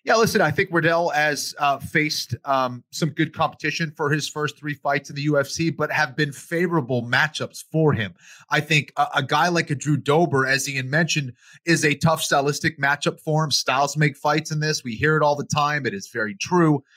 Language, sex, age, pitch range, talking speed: English, male, 30-49, 135-165 Hz, 215 wpm